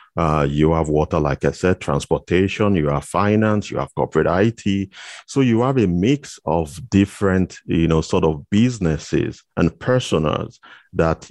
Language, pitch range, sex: English, 80-100 Hz, male